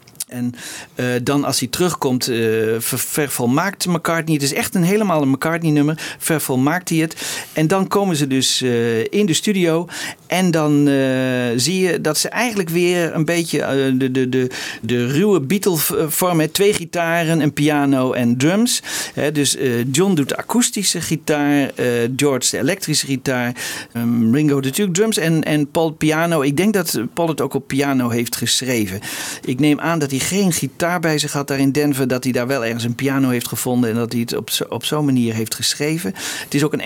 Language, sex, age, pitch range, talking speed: Dutch, male, 50-69, 130-175 Hz, 195 wpm